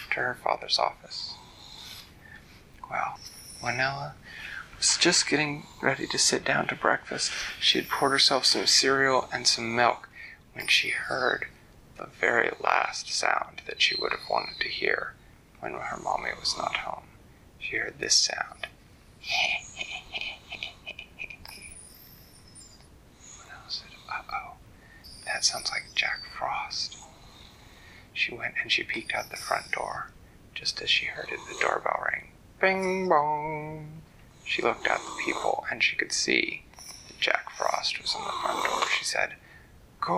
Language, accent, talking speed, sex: English, American, 140 wpm, male